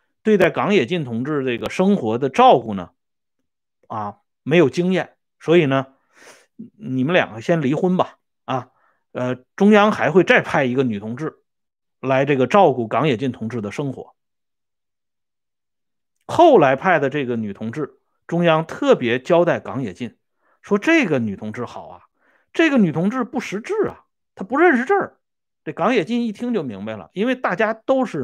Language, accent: Swedish, Chinese